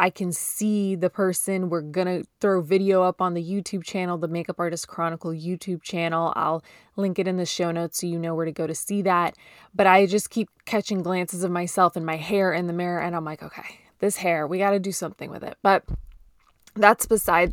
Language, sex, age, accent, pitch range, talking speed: English, female, 20-39, American, 175-205 Hz, 230 wpm